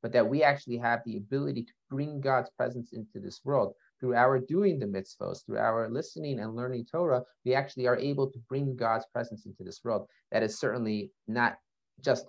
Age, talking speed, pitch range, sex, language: 30-49, 200 wpm, 110-140 Hz, male, English